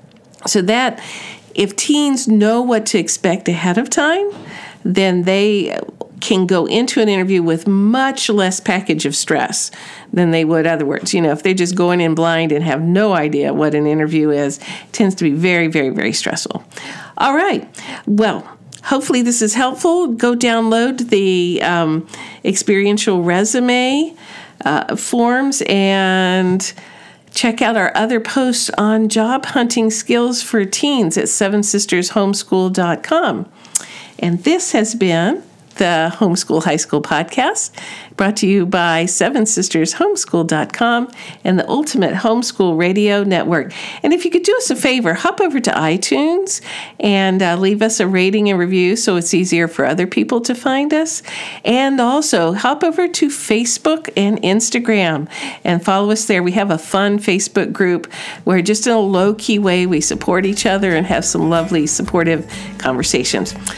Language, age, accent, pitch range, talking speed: English, 50-69, American, 175-235 Hz, 155 wpm